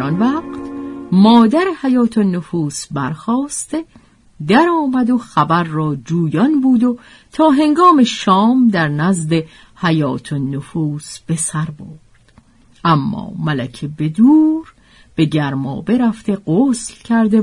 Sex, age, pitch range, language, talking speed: female, 50-69, 155-245 Hz, Persian, 115 wpm